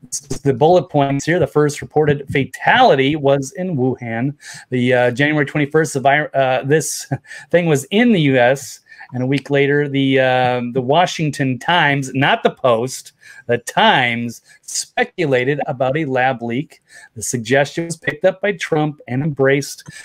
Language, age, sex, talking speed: English, 30-49, male, 155 wpm